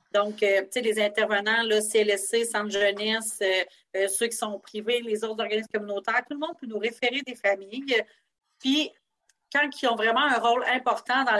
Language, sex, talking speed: French, female, 190 wpm